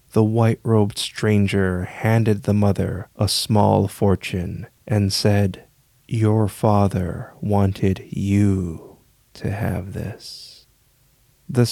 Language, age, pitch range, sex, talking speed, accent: English, 30-49, 95-110 Hz, male, 95 wpm, American